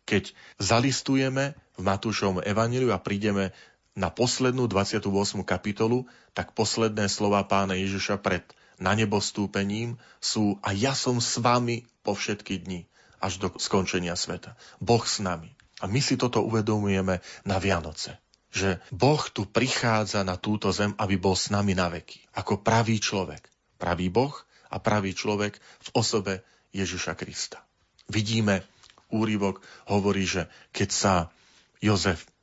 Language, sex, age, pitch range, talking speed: Slovak, male, 40-59, 95-110 Hz, 135 wpm